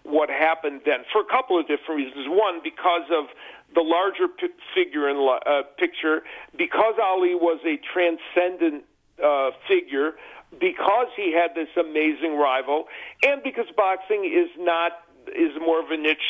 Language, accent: English, American